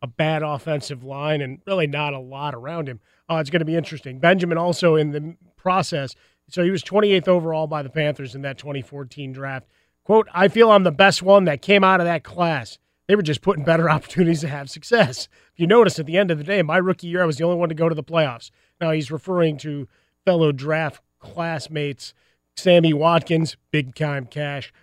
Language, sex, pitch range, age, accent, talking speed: English, male, 135-165 Hz, 30-49, American, 215 wpm